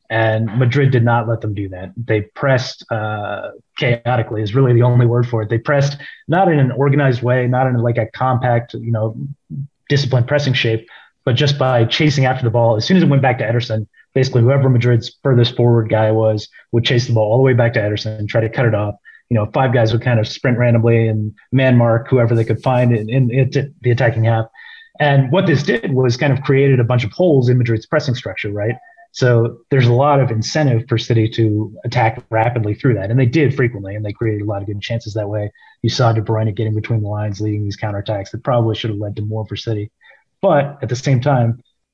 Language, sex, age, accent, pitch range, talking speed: English, male, 30-49, American, 110-130 Hz, 235 wpm